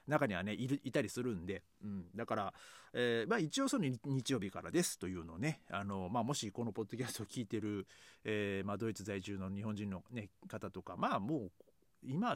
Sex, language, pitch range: male, Japanese, 100-130 Hz